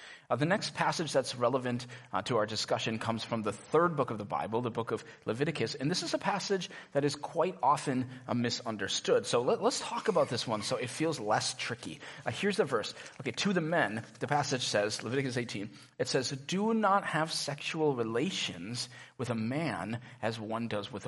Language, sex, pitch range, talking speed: English, male, 115-155 Hz, 200 wpm